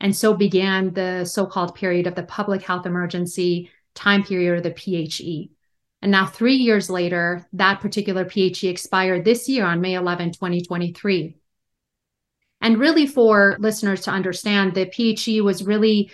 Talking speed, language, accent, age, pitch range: 150 wpm, English, American, 30-49, 180-210 Hz